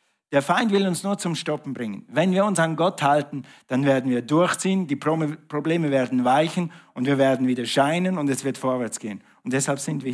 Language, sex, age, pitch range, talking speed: German, male, 50-69, 135-170 Hz, 215 wpm